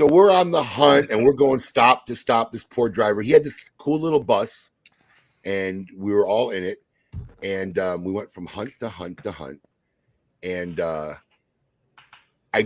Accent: American